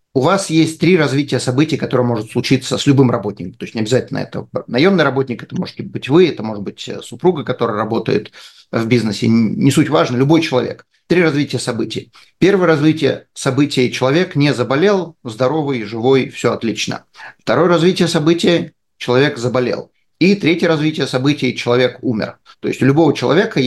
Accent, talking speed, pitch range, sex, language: native, 165 wpm, 125-160 Hz, male, Russian